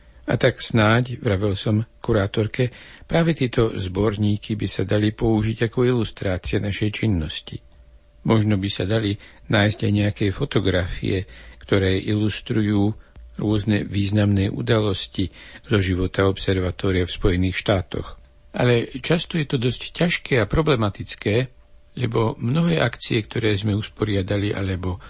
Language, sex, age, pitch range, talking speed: Slovak, male, 60-79, 95-115 Hz, 120 wpm